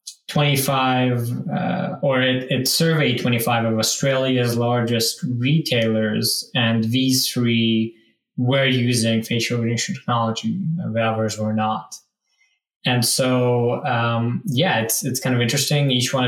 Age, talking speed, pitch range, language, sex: 20-39, 130 wpm, 115-135 Hz, English, male